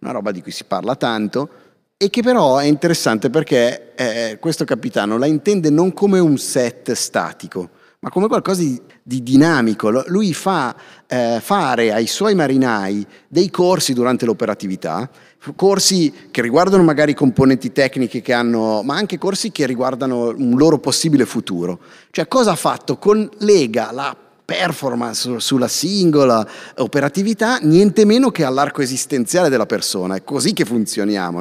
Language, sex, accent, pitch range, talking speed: Italian, male, native, 115-180 Hz, 150 wpm